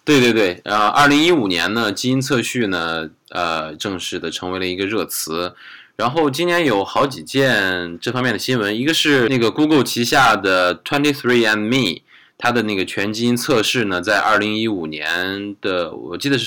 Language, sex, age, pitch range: Chinese, male, 20-39, 95-130 Hz